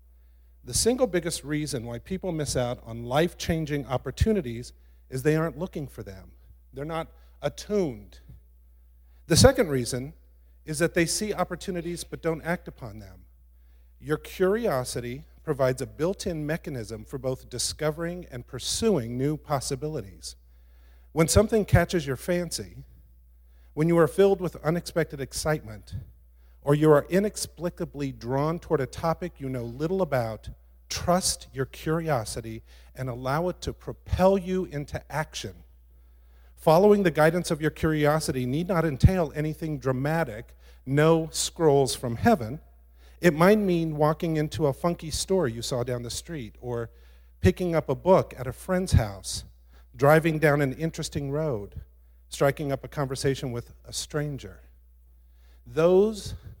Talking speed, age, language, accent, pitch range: 140 wpm, 50-69, English, American, 100-165 Hz